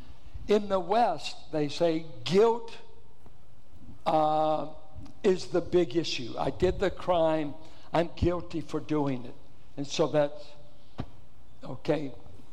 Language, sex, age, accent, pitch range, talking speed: English, male, 60-79, American, 155-215 Hz, 115 wpm